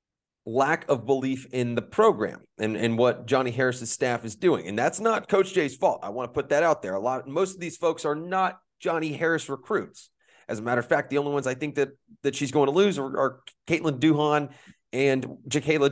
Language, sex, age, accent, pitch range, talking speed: English, male, 30-49, American, 125-165 Hz, 225 wpm